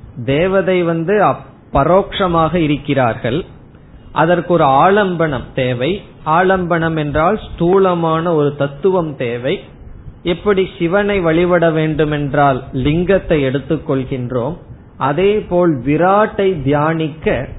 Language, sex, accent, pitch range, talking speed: Tamil, male, native, 130-175 Hz, 90 wpm